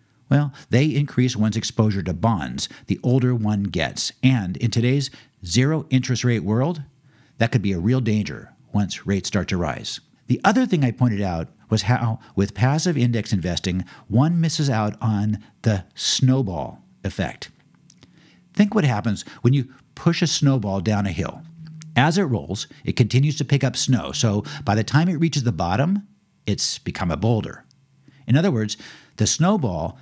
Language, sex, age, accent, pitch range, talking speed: English, male, 50-69, American, 105-140 Hz, 170 wpm